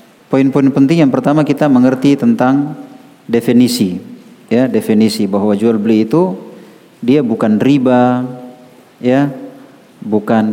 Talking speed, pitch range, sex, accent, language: 110 wpm, 115-145 Hz, male, native, Indonesian